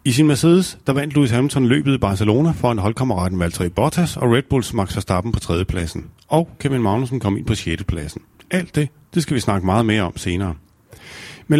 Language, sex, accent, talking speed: Danish, male, native, 205 wpm